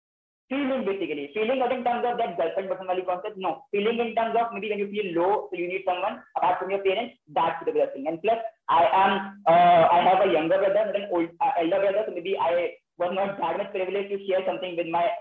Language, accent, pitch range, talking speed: Hindi, native, 175-215 Hz, 240 wpm